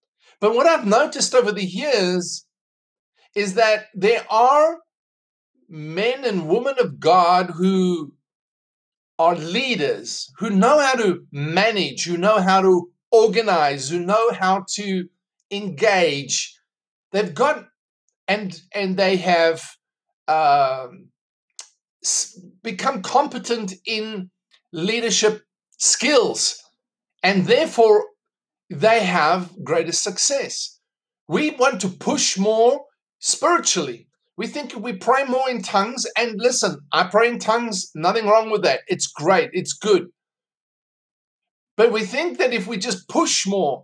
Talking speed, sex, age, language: 120 wpm, male, 50-69, English